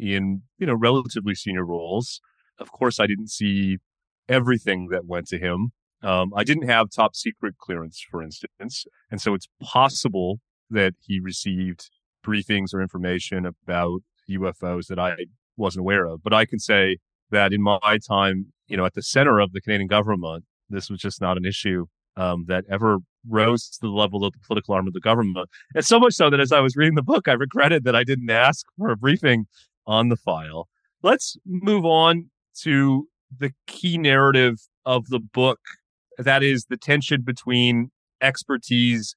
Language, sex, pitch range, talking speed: English, male, 95-130 Hz, 180 wpm